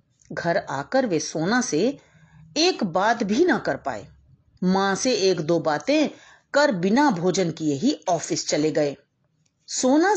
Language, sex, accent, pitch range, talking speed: Hindi, female, native, 155-245 Hz, 150 wpm